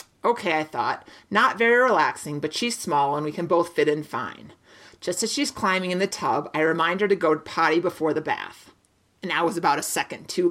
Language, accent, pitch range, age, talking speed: English, American, 170-215 Hz, 30-49, 225 wpm